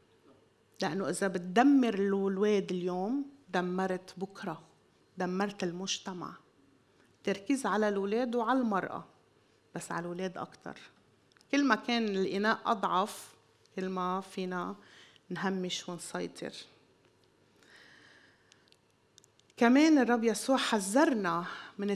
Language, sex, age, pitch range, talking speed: Arabic, female, 30-49, 180-220 Hz, 90 wpm